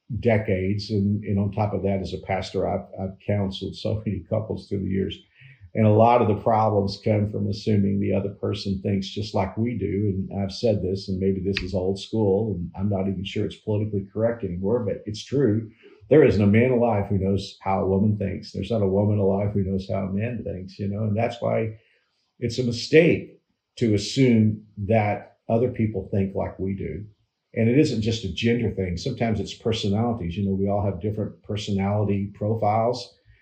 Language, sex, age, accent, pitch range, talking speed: English, male, 50-69, American, 100-115 Hz, 205 wpm